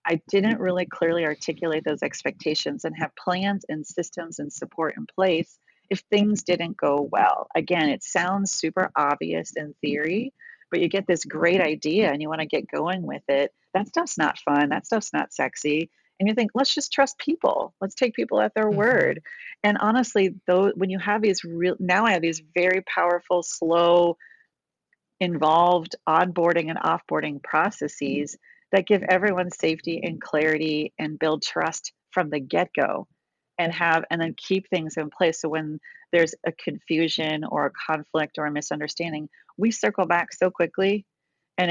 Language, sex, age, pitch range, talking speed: English, female, 40-59, 150-190 Hz, 175 wpm